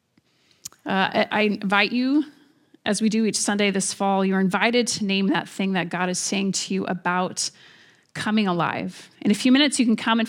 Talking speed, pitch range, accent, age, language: 200 wpm, 190-230 Hz, American, 30-49, English